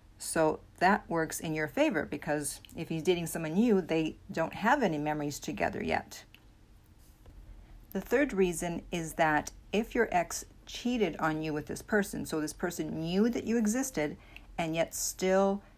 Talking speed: 165 wpm